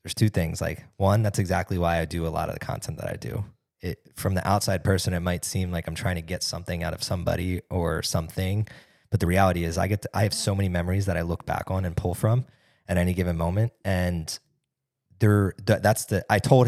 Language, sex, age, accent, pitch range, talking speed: English, male, 20-39, American, 90-115 Hz, 240 wpm